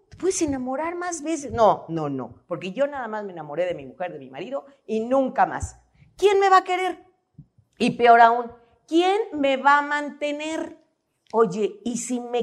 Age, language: 40-59, Spanish